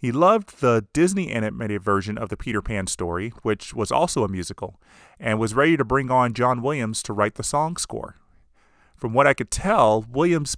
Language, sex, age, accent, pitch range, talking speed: English, male, 30-49, American, 105-145 Hz, 200 wpm